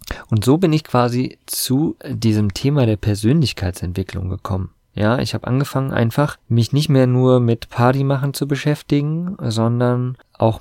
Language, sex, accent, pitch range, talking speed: German, male, German, 100-120 Hz, 155 wpm